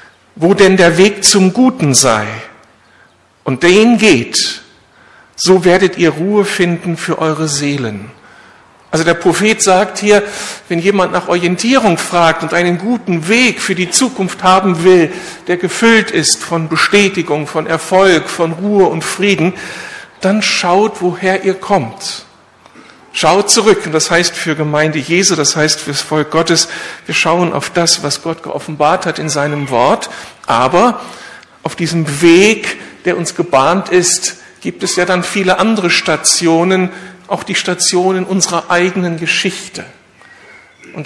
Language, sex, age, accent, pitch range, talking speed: German, male, 60-79, German, 160-190 Hz, 145 wpm